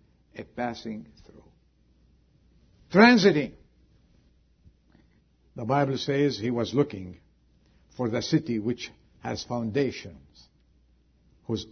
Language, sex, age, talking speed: English, male, 70-89, 85 wpm